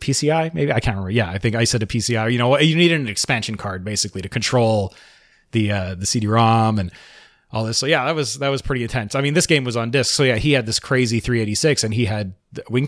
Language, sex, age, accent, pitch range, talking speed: English, male, 30-49, American, 105-130 Hz, 255 wpm